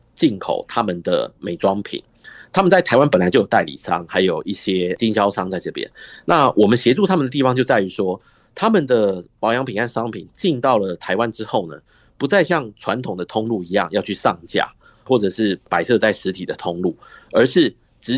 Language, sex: Chinese, male